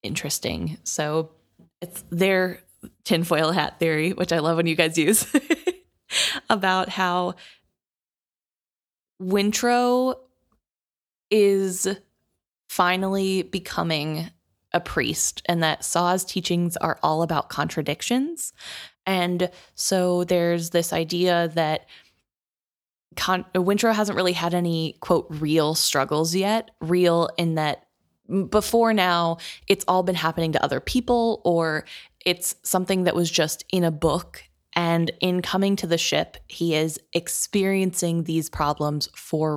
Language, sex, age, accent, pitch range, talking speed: English, female, 20-39, American, 165-190 Hz, 120 wpm